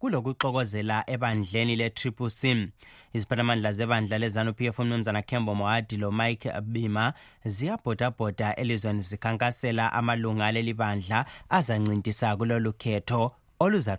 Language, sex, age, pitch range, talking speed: English, male, 30-49, 105-120 Hz, 120 wpm